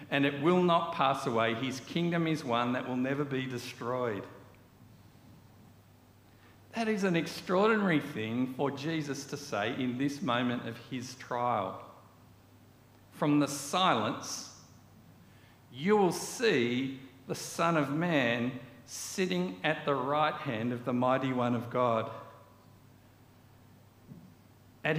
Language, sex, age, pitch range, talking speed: English, male, 50-69, 115-150 Hz, 125 wpm